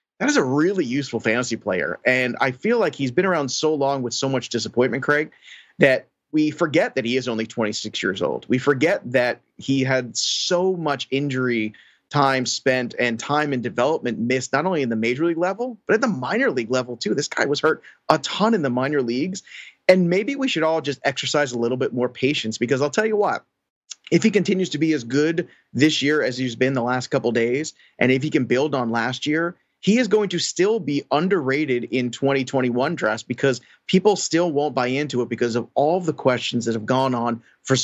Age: 30-49